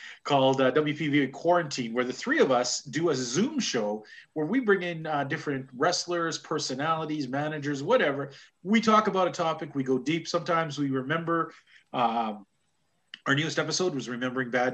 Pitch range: 130-165 Hz